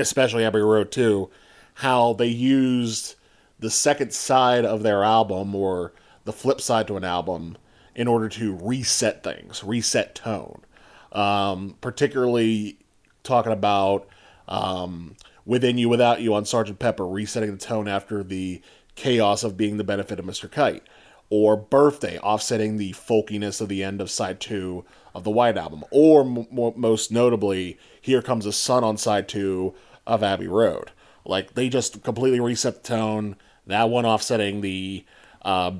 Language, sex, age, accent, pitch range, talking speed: English, male, 30-49, American, 100-125 Hz, 155 wpm